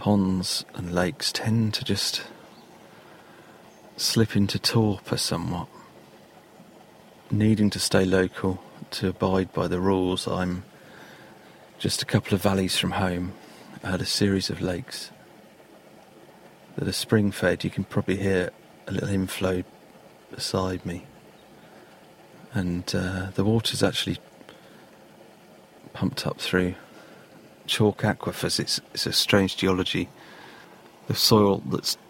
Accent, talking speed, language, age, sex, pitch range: British, 115 wpm, English, 40-59, male, 90-105 Hz